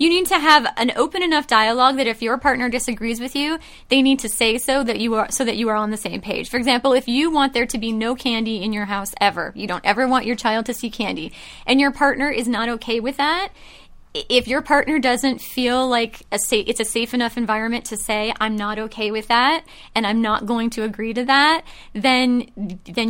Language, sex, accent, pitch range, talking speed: English, female, American, 215-255 Hz, 235 wpm